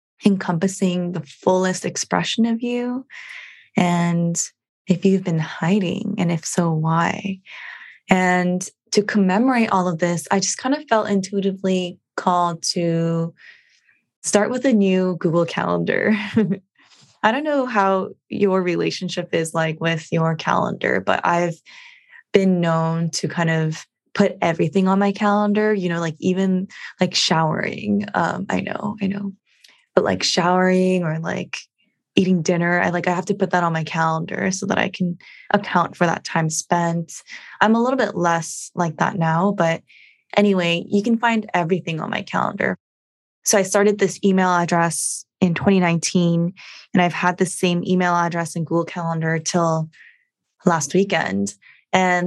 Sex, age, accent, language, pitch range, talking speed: female, 20-39, American, English, 170-200 Hz, 155 wpm